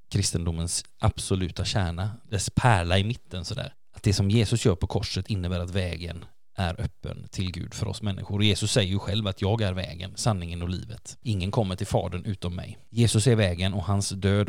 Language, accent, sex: Swedish, native, male